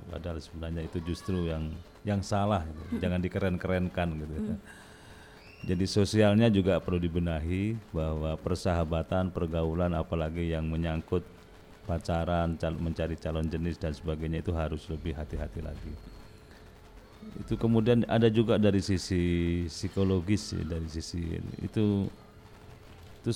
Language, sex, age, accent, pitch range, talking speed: Indonesian, male, 40-59, native, 85-100 Hz, 115 wpm